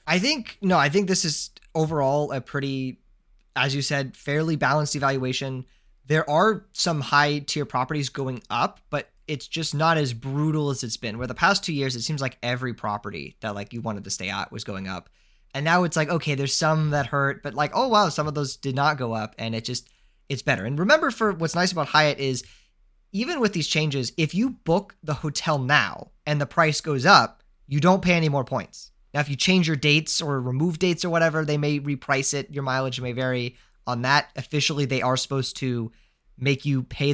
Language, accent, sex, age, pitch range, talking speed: English, American, male, 20-39, 130-160 Hz, 220 wpm